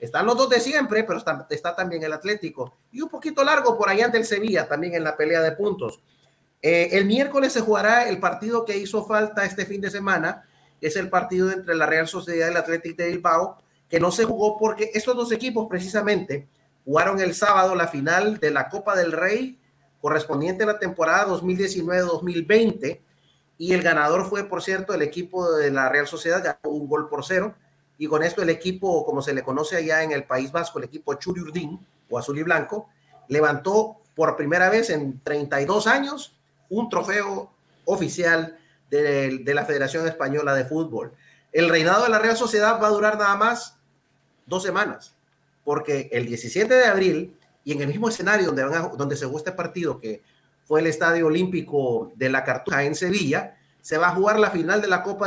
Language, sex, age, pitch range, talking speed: Spanish, male, 30-49, 150-205 Hz, 200 wpm